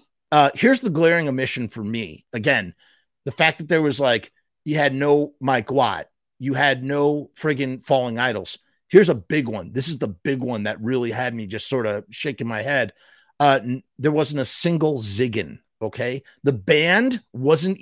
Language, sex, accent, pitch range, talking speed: English, male, American, 125-165 Hz, 185 wpm